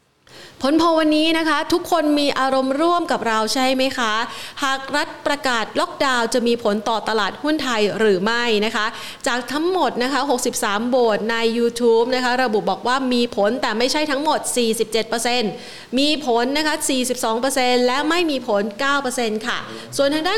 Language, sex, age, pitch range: Thai, female, 30-49, 220-280 Hz